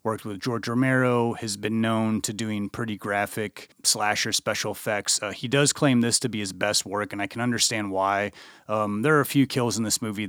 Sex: male